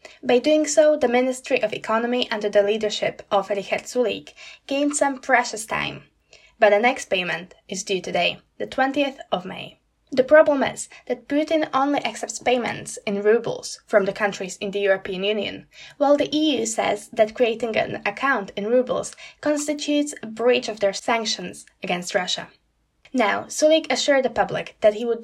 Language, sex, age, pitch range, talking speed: Slovak, female, 10-29, 210-275 Hz, 170 wpm